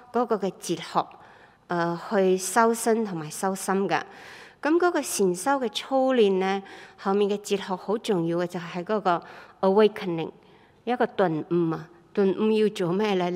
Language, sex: Chinese, female